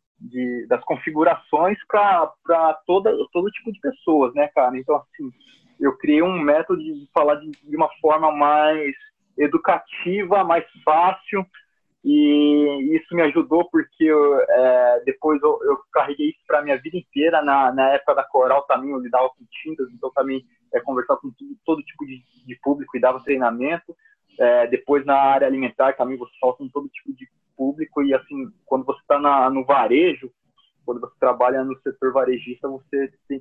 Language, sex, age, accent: Portuguese, male, 20-39, Brazilian